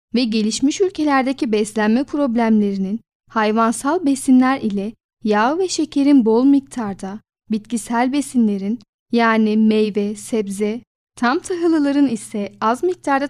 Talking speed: 105 wpm